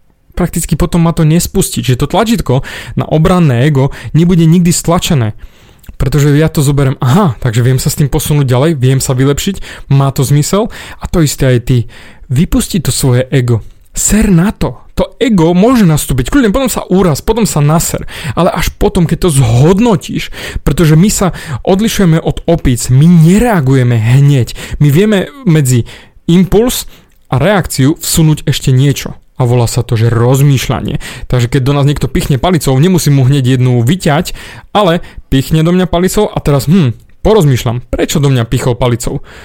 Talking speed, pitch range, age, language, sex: 170 wpm, 130-175 Hz, 30-49, Slovak, male